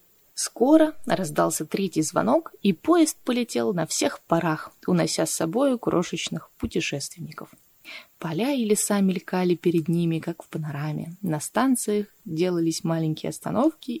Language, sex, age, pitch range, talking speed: Russian, female, 20-39, 160-225 Hz, 125 wpm